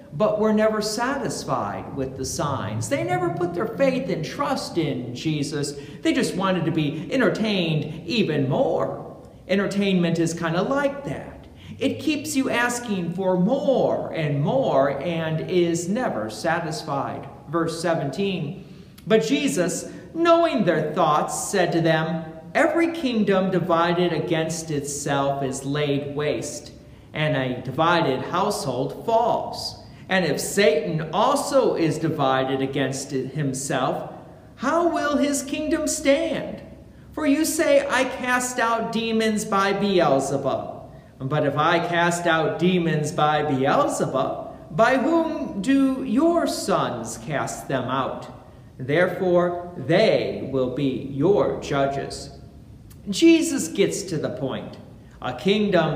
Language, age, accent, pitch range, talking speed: English, 40-59, American, 145-230 Hz, 125 wpm